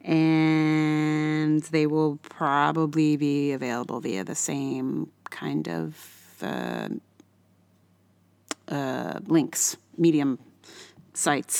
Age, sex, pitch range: 30-49, female, 150-225 Hz